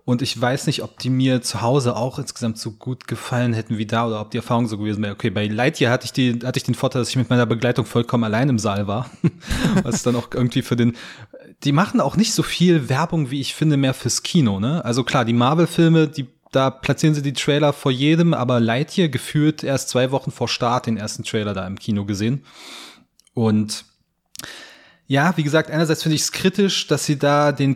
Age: 30-49